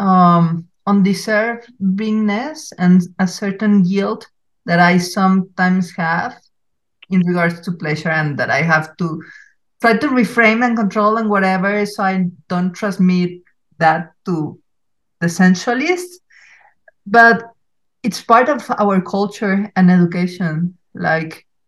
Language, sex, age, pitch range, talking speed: English, female, 50-69, 175-205 Hz, 120 wpm